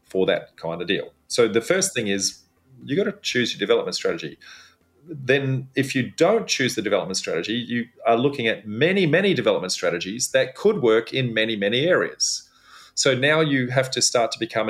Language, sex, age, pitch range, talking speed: English, male, 40-59, 110-150 Hz, 195 wpm